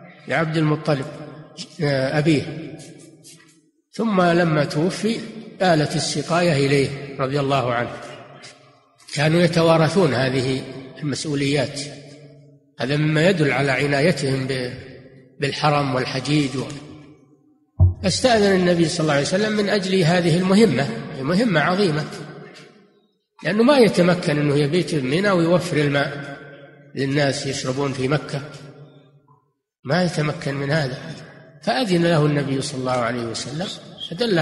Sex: male